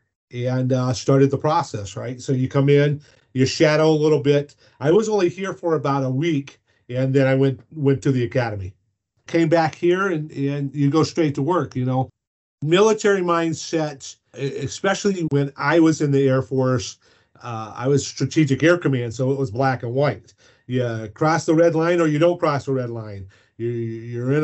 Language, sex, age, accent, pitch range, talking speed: English, male, 40-59, American, 125-155 Hz, 195 wpm